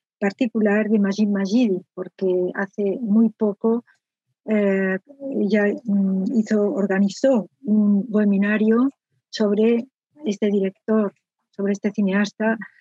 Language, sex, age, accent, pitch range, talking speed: Spanish, female, 40-59, Spanish, 200-225 Hz, 90 wpm